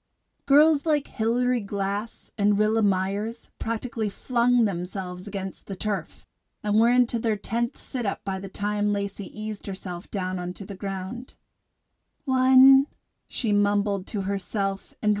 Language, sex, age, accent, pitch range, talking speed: English, female, 30-49, American, 190-240 Hz, 140 wpm